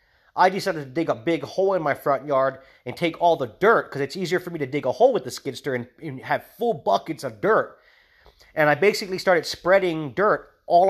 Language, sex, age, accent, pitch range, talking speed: English, male, 30-49, American, 140-175 Hz, 230 wpm